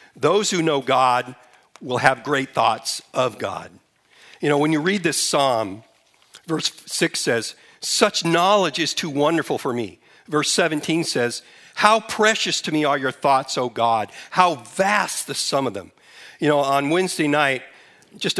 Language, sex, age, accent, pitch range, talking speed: English, male, 50-69, American, 125-170 Hz, 165 wpm